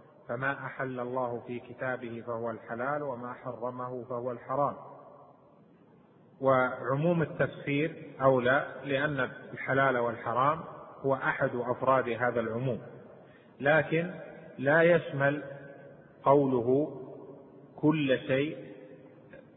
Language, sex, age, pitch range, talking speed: Arabic, male, 30-49, 125-150 Hz, 85 wpm